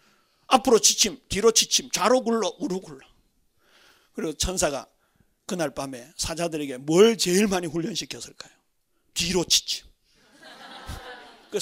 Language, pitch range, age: Korean, 195-280 Hz, 40-59